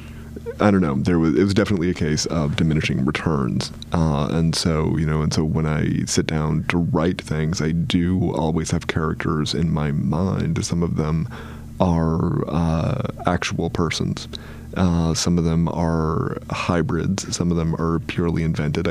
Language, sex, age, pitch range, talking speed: English, male, 30-49, 80-90 Hz, 170 wpm